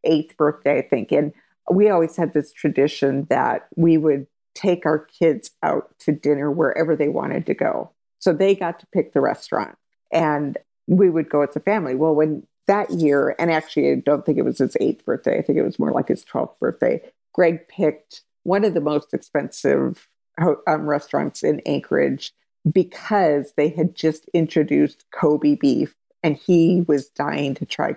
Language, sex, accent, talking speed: English, female, American, 180 wpm